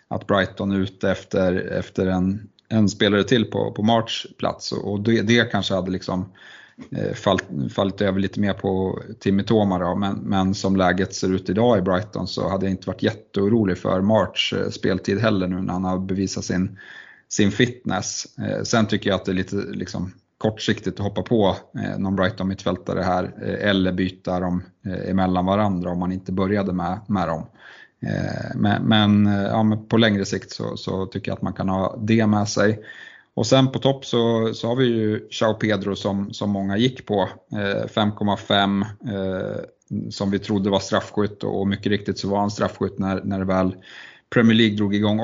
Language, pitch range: Swedish, 95-110 Hz